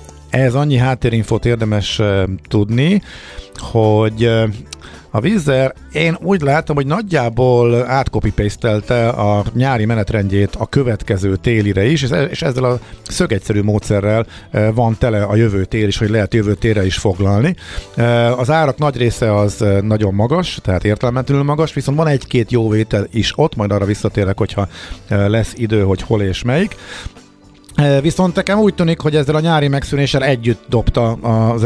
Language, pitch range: Hungarian, 100-125 Hz